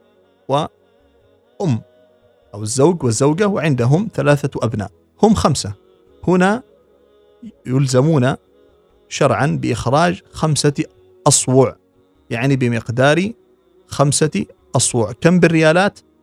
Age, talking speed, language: 40-59, 80 wpm, English